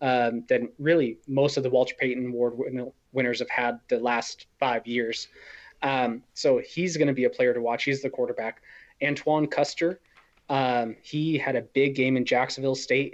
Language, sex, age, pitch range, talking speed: English, male, 20-39, 125-140 Hz, 185 wpm